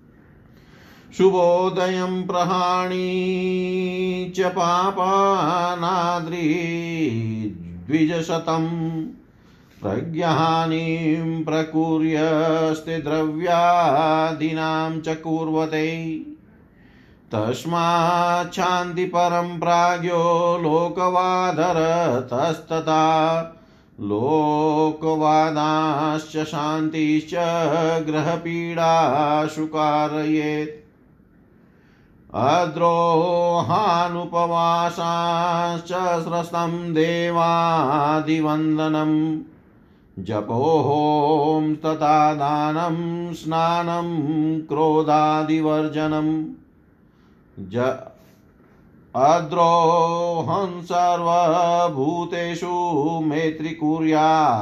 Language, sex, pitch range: Hindi, male, 155-170 Hz